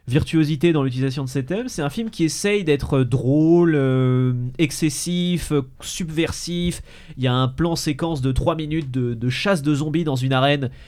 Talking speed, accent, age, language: 180 wpm, French, 30-49, French